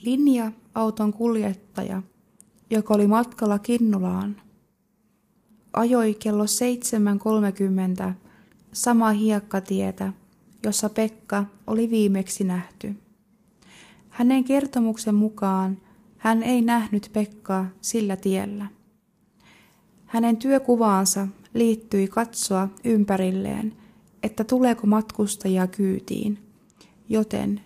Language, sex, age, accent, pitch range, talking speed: Finnish, female, 20-39, native, 200-225 Hz, 80 wpm